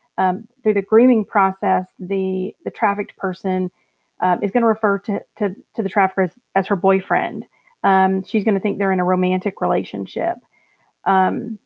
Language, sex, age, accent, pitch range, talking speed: English, female, 40-59, American, 185-205 Hz, 170 wpm